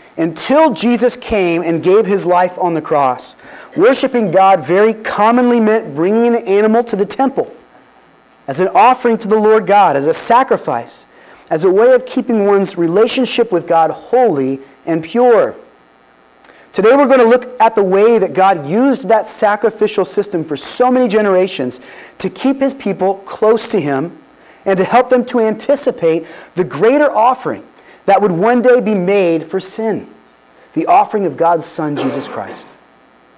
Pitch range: 170-235 Hz